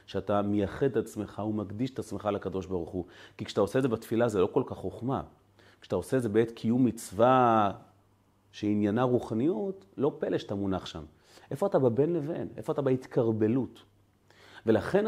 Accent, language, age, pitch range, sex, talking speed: native, Hebrew, 30-49, 100-125 Hz, male, 170 wpm